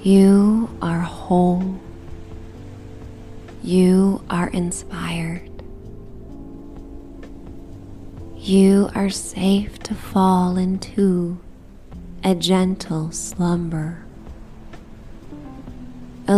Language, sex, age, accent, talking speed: English, female, 20-39, American, 60 wpm